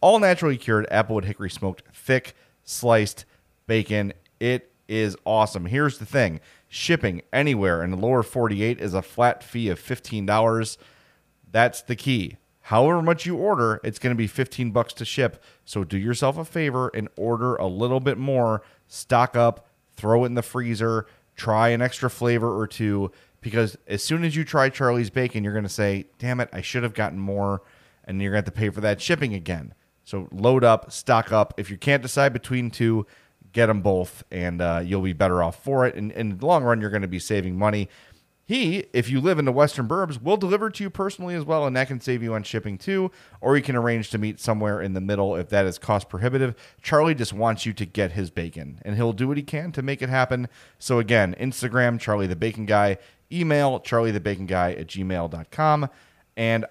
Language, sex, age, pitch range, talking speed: English, male, 30-49, 100-125 Hz, 205 wpm